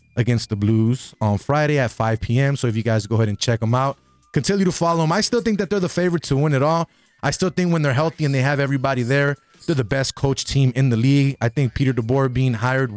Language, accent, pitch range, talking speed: English, American, 125-155 Hz, 270 wpm